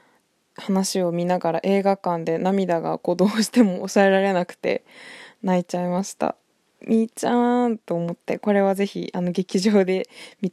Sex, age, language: female, 20-39, Japanese